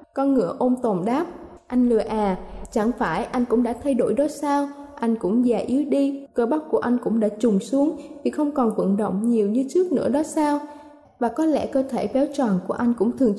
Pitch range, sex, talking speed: 220-285 Hz, female, 235 wpm